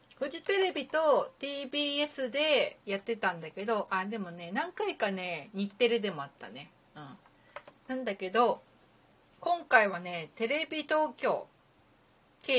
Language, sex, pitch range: Japanese, female, 175-285 Hz